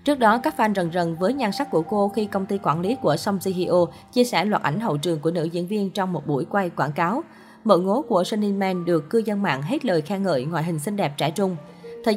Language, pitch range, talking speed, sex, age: Vietnamese, 170-215 Hz, 270 wpm, female, 20-39